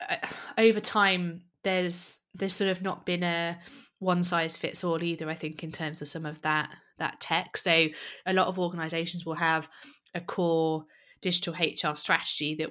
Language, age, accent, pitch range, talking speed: English, 20-39, British, 150-170 Hz, 175 wpm